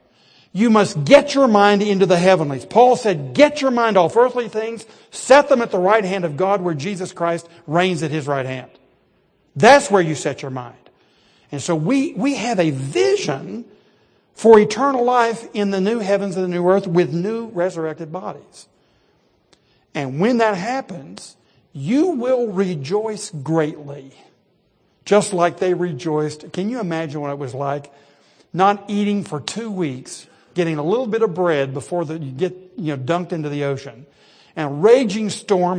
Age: 60-79